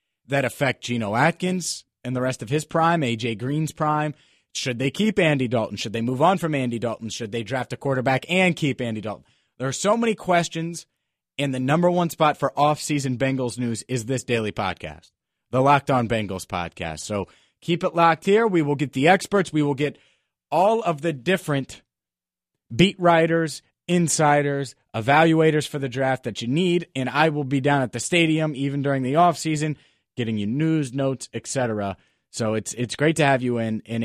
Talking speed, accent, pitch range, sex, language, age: 195 wpm, American, 120-160 Hz, male, English, 30-49